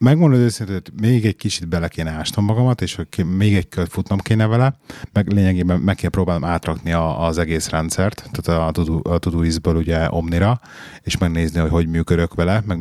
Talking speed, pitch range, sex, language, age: 200 wpm, 85-115 Hz, male, Hungarian, 30-49